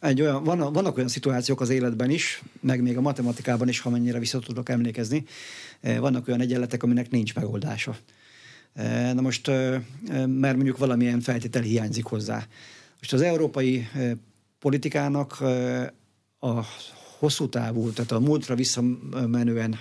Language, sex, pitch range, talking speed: Hungarian, male, 120-130 Hz, 125 wpm